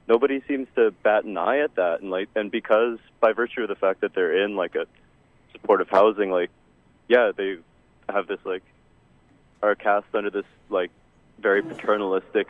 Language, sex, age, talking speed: English, male, 20-39, 180 wpm